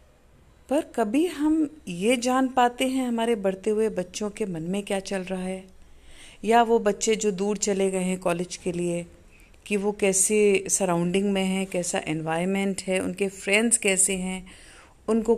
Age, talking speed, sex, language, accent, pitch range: 50-69, 170 wpm, female, Hindi, native, 185-235 Hz